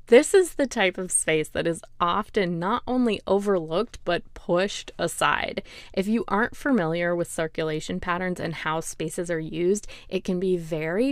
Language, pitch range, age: English, 170-210 Hz, 20-39